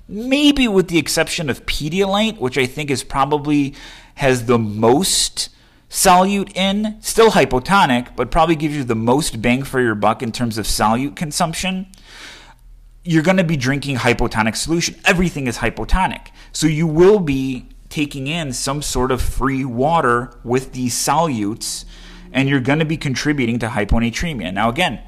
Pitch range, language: 120-170 Hz, English